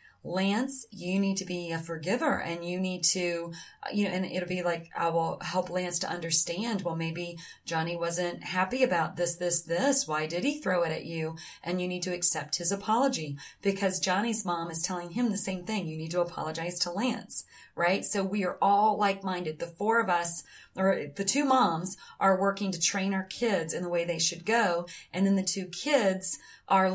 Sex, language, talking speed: female, English, 205 wpm